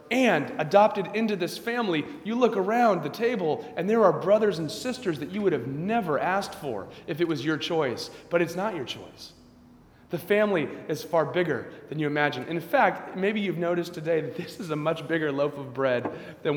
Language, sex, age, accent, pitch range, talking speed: English, male, 30-49, American, 130-185 Hz, 205 wpm